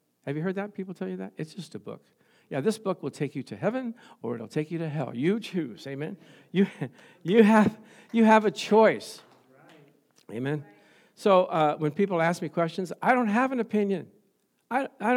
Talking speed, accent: 200 wpm, American